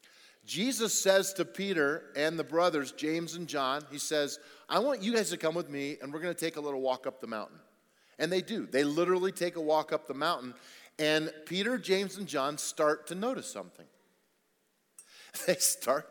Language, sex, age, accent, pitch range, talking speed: English, male, 40-59, American, 155-195 Hz, 195 wpm